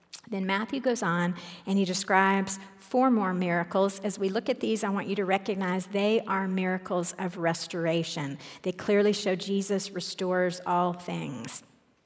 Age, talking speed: 50-69, 160 wpm